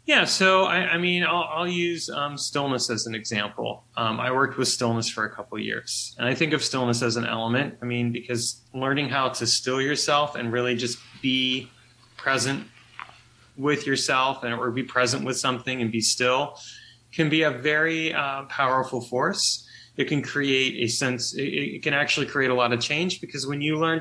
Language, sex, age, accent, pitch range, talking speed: English, male, 20-39, American, 120-145 Hz, 200 wpm